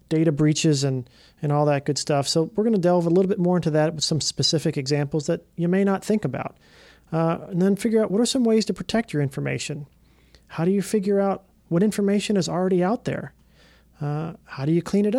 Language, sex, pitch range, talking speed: English, male, 150-180 Hz, 235 wpm